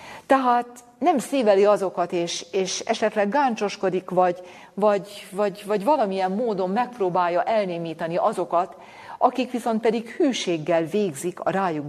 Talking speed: 115 wpm